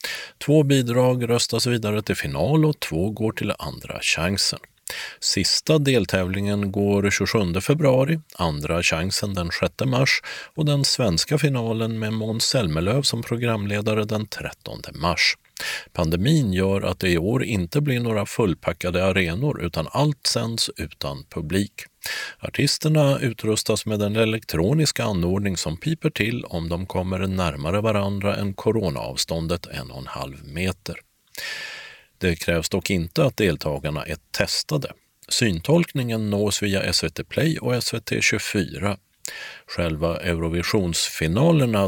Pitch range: 90-125 Hz